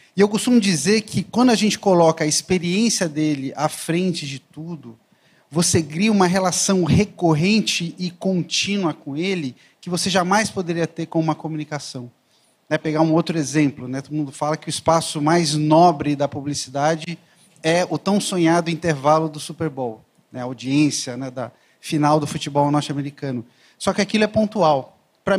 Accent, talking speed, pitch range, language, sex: Brazilian, 170 wpm, 150-185 Hz, Portuguese, male